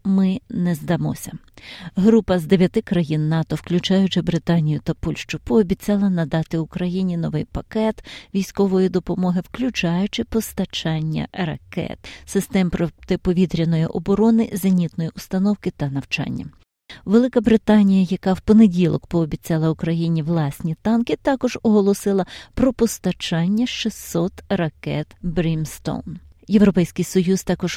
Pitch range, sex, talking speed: 165-200 Hz, female, 105 wpm